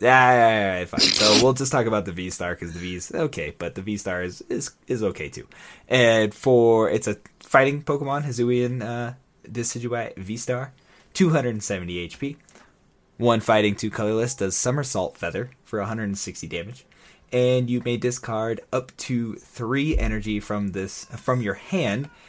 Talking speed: 195 wpm